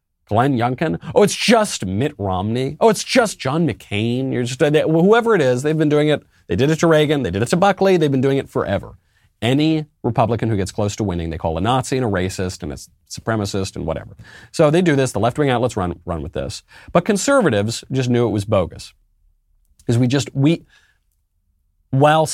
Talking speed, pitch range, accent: 220 wpm, 95-140 Hz, American